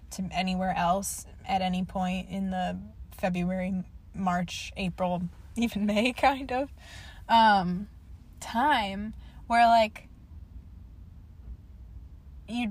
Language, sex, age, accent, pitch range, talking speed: English, female, 20-39, American, 185-230 Hz, 95 wpm